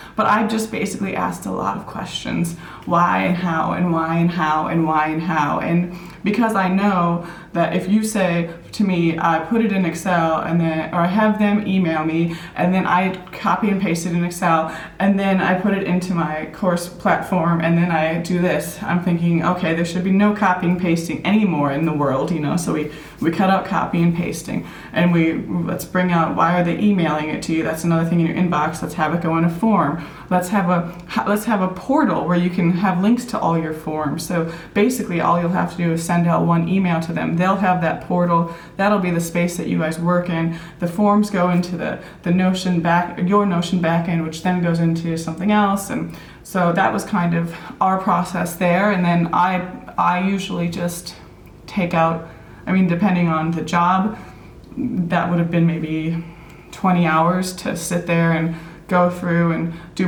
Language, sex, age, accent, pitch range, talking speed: English, female, 20-39, American, 165-185 Hz, 215 wpm